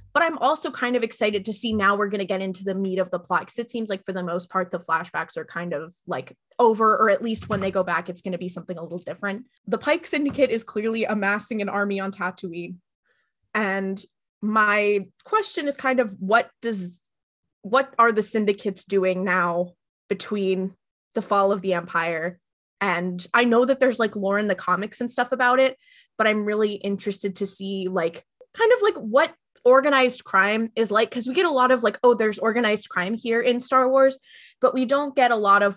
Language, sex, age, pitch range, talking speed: English, female, 20-39, 190-245 Hz, 220 wpm